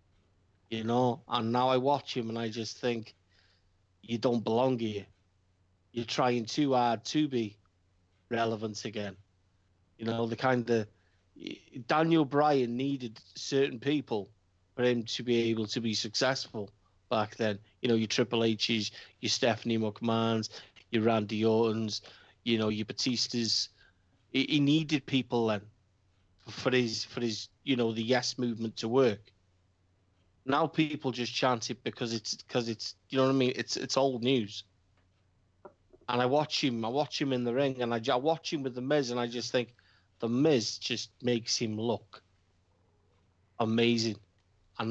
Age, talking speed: 30-49, 160 wpm